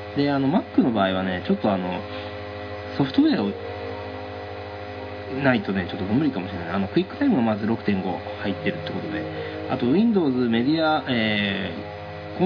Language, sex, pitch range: Japanese, male, 105-135 Hz